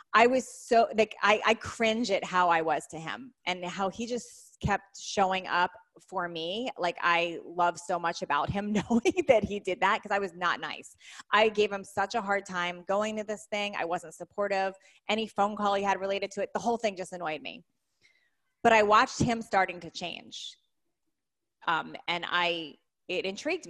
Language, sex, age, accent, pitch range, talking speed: English, female, 20-39, American, 175-215 Hz, 200 wpm